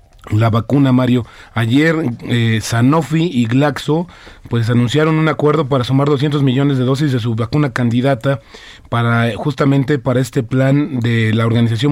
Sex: male